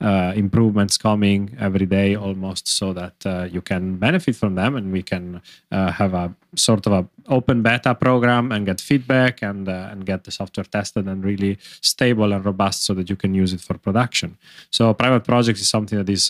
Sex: male